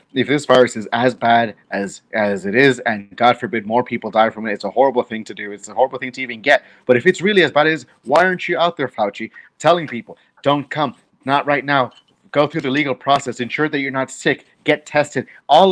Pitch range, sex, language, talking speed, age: 125-160 Hz, male, English, 245 wpm, 30-49